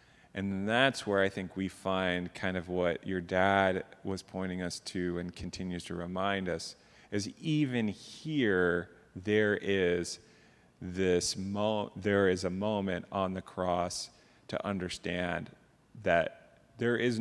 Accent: American